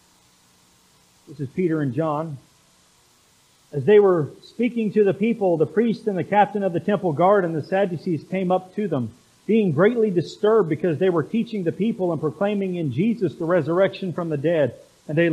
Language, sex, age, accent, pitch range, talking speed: English, male, 40-59, American, 160-190 Hz, 190 wpm